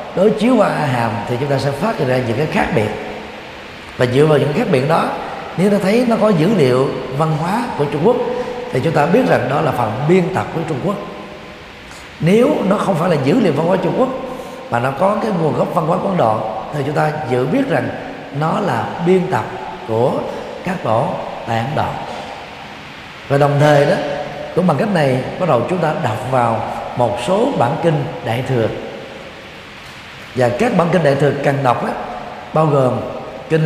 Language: Vietnamese